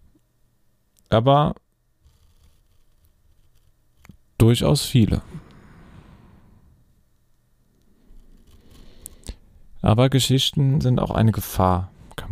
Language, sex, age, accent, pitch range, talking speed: German, male, 40-59, German, 95-110 Hz, 50 wpm